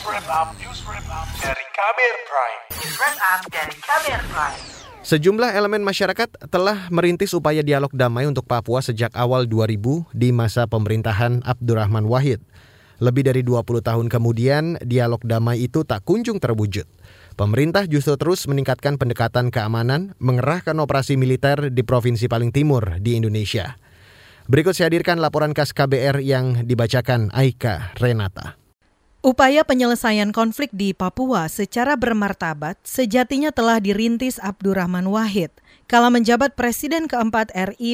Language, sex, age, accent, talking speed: Indonesian, male, 30-49, native, 110 wpm